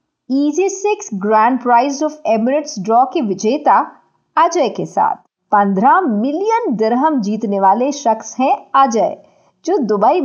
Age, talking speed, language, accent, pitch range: 50-69, 70 wpm, Hindi, native, 220-330 Hz